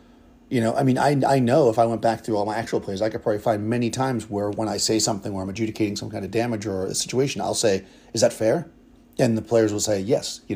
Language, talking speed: English, 280 wpm